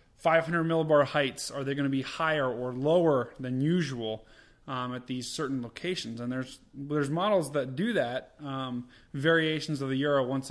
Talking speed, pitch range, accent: 175 wpm, 125-155 Hz, American